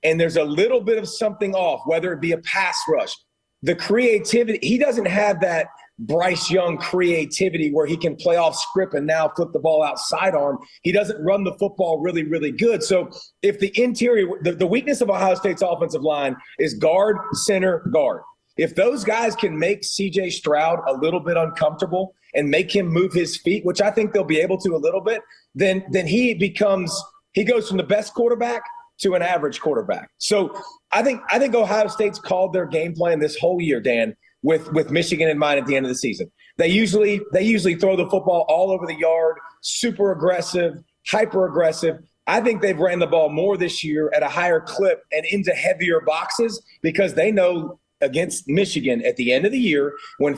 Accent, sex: American, male